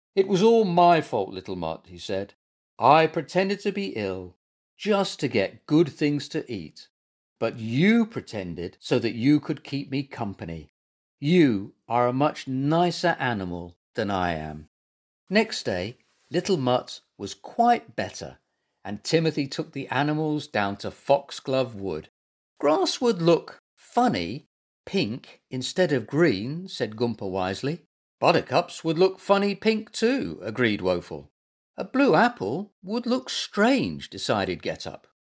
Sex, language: male, English